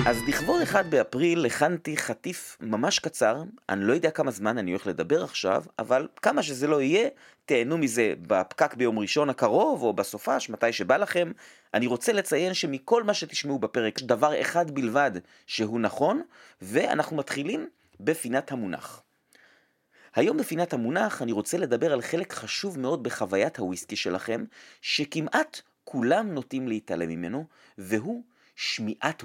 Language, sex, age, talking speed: Hebrew, male, 30-49, 140 wpm